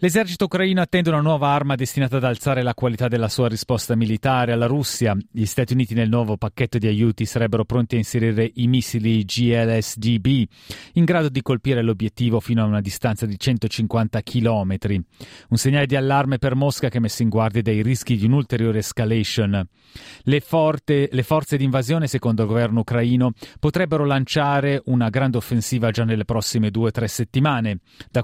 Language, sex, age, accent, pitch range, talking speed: Italian, male, 30-49, native, 110-130 Hz, 175 wpm